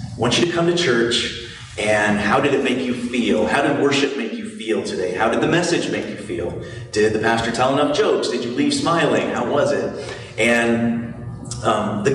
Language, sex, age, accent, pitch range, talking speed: English, male, 30-49, American, 115-145 Hz, 210 wpm